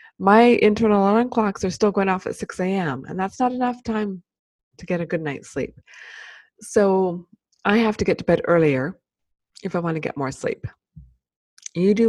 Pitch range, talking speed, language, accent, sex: 160-220 Hz, 195 wpm, English, American, female